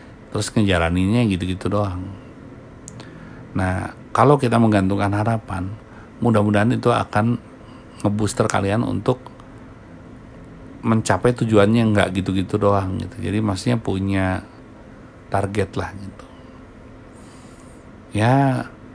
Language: Indonesian